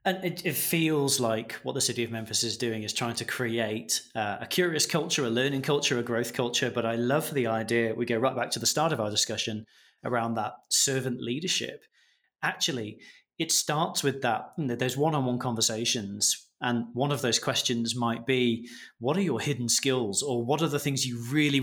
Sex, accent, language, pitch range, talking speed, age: male, British, English, 115-145 Hz, 200 wpm, 20-39